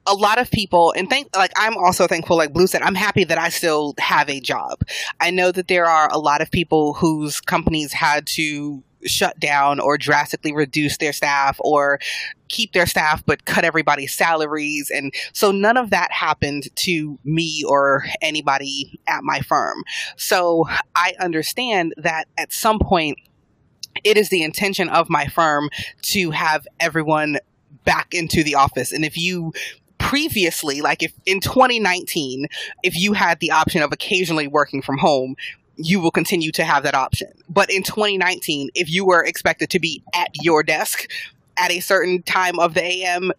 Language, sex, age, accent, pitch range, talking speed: English, female, 20-39, American, 145-180 Hz, 175 wpm